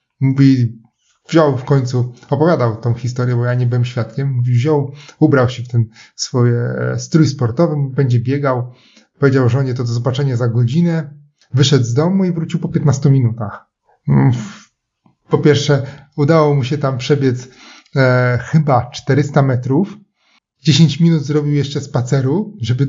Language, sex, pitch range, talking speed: Polish, male, 125-155 Hz, 145 wpm